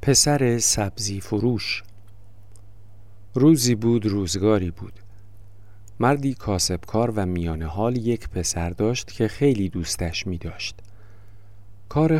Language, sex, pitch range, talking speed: Persian, male, 100-120 Hz, 105 wpm